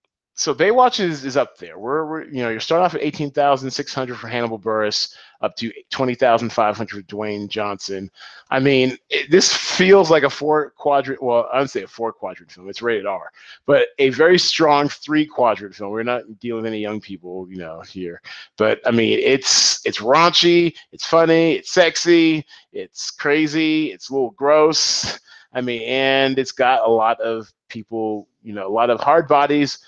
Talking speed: 200 wpm